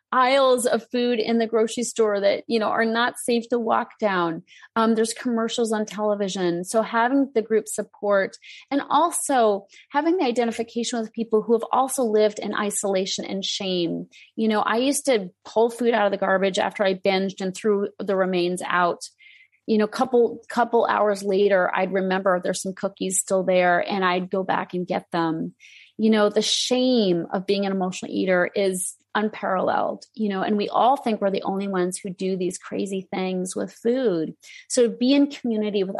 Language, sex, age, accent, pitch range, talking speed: English, female, 30-49, American, 195-235 Hz, 190 wpm